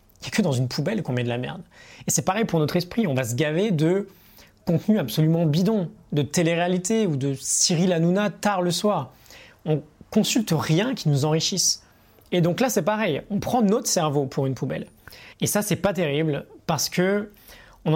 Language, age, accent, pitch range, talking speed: French, 20-39, French, 135-185 Hz, 205 wpm